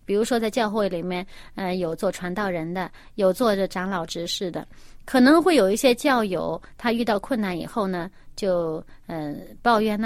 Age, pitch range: 30-49, 195-280 Hz